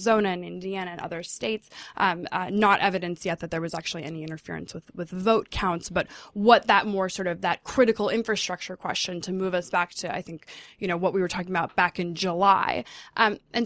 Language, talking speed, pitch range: English, 215 wpm, 185-215 Hz